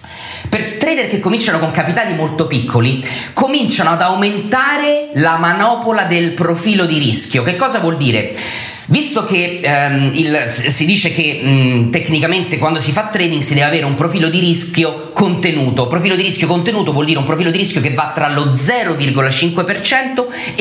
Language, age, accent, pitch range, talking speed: Italian, 30-49, native, 150-200 Hz, 165 wpm